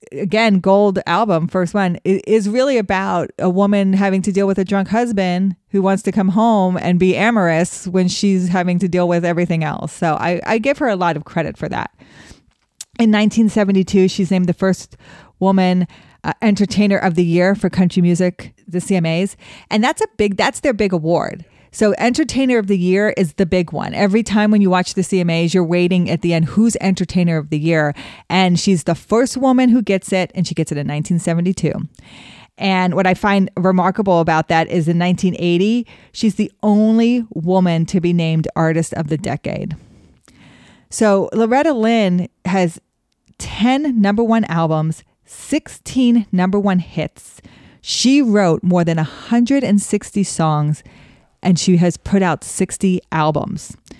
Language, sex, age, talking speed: English, female, 30-49, 170 wpm